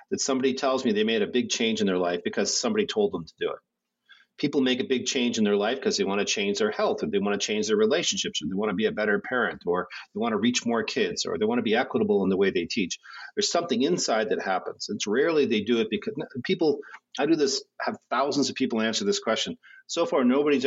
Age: 40-59